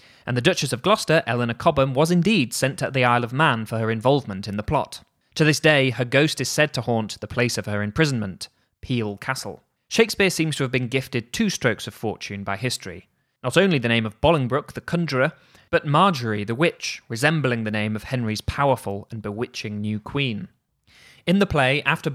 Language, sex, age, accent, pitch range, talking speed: English, male, 20-39, British, 110-140 Hz, 205 wpm